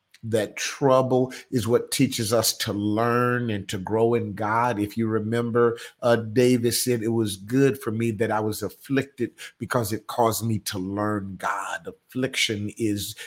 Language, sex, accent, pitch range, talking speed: English, male, American, 110-130 Hz, 165 wpm